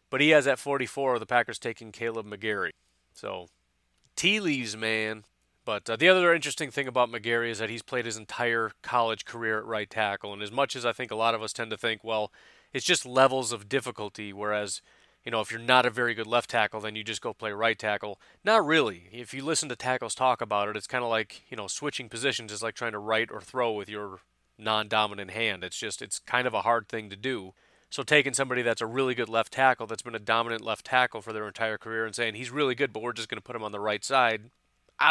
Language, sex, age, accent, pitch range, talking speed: English, male, 30-49, American, 105-125 Hz, 250 wpm